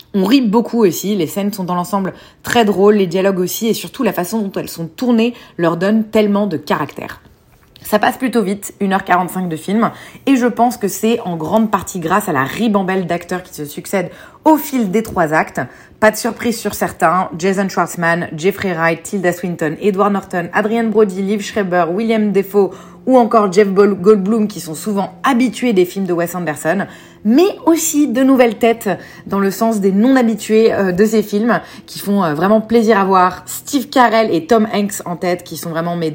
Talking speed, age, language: 195 wpm, 30-49, French